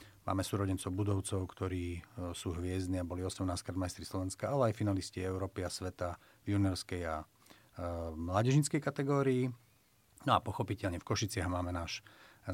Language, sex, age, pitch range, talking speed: Slovak, male, 40-59, 90-110 Hz, 155 wpm